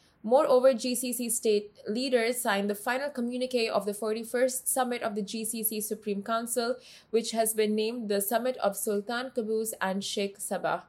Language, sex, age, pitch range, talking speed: Arabic, female, 20-39, 205-245 Hz, 160 wpm